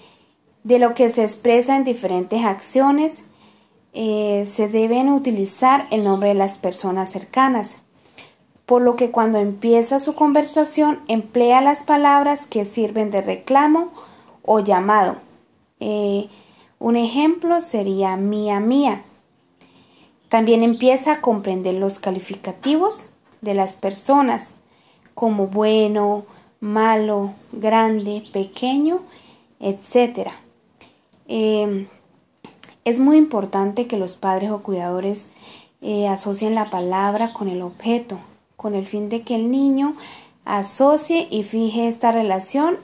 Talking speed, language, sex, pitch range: 115 wpm, Spanish, female, 200-255 Hz